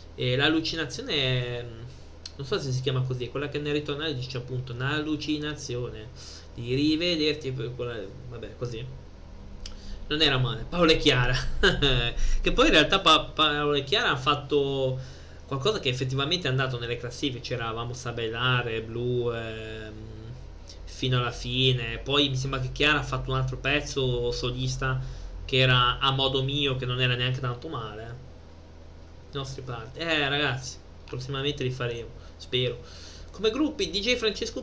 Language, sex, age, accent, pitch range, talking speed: Italian, male, 20-39, native, 115-150 Hz, 145 wpm